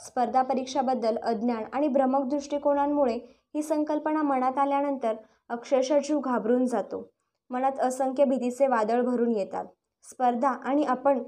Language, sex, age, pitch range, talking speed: Marathi, male, 20-39, 235-285 Hz, 115 wpm